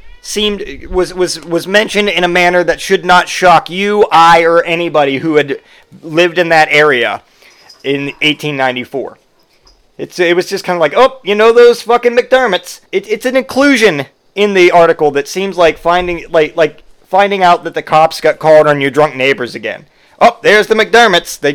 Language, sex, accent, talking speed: English, male, American, 185 wpm